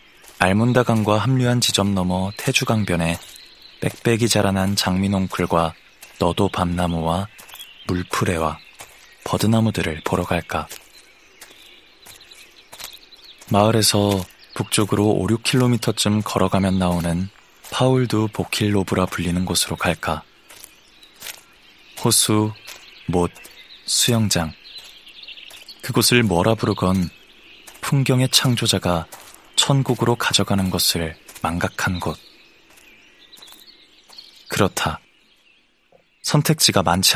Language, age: Korean, 20-39